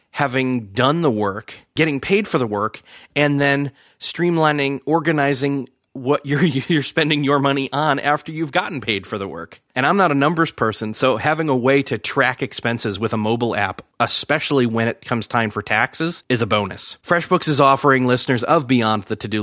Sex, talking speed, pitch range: male, 190 wpm, 110-145 Hz